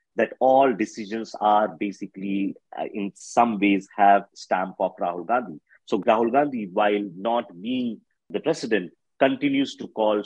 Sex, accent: male, Indian